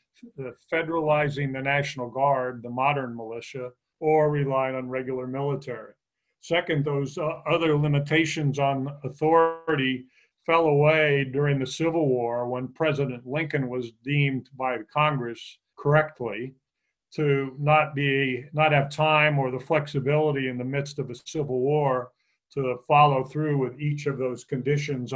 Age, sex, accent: 50-69, male, American